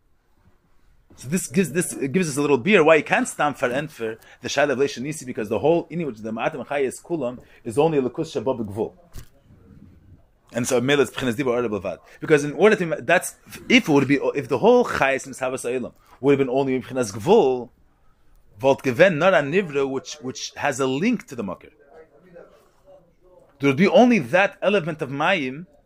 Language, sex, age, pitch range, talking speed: English, male, 30-49, 130-185 Hz, 180 wpm